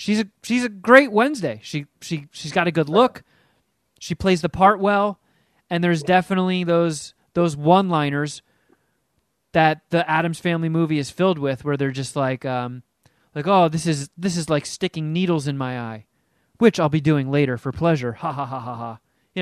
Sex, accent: male, American